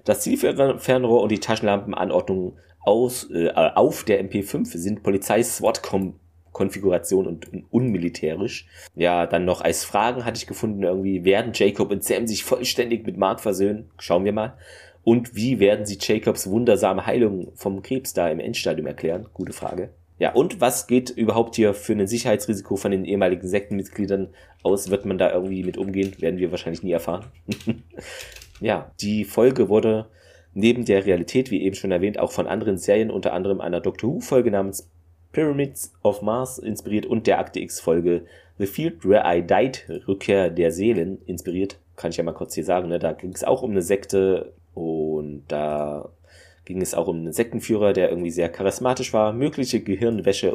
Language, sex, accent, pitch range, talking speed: German, male, German, 85-110 Hz, 170 wpm